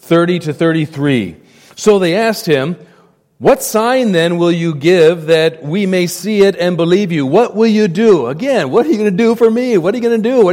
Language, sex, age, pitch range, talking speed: English, male, 40-59, 135-185 Hz, 235 wpm